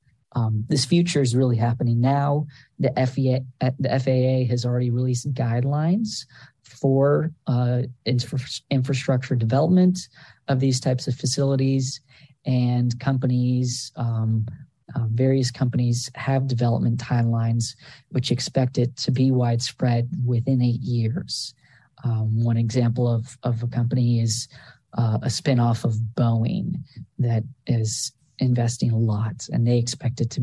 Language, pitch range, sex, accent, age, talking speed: English, 120-130 Hz, male, American, 40-59, 130 wpm